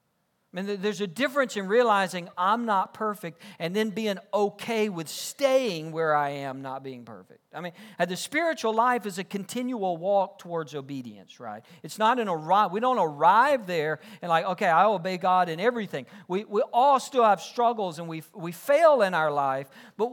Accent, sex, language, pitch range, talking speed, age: American, male, English, 165-230 Hz, 190 wpm, 50-69